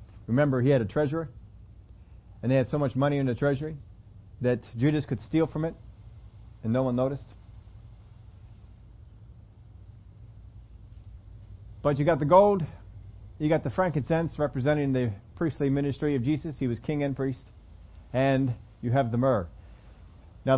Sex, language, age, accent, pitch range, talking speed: male, English, 40-59, American, 100-140 Hz, 145 wpm